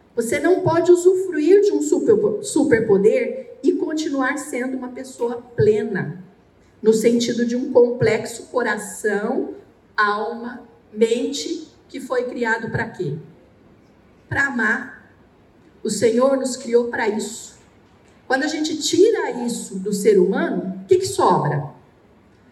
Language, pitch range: Portuguese, 230-325 Hz